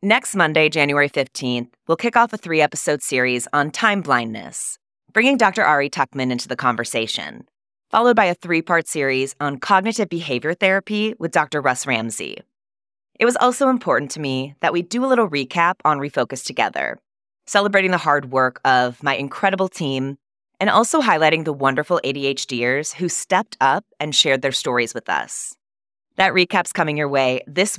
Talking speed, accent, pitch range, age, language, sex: 165 wpm, American, 130-180 Hz, 20-39, English, female